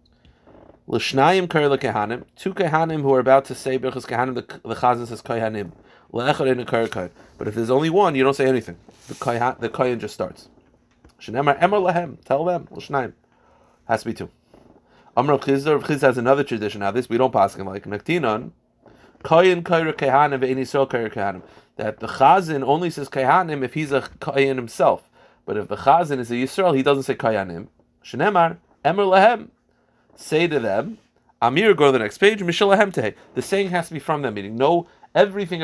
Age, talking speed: 30-49, 185 wpm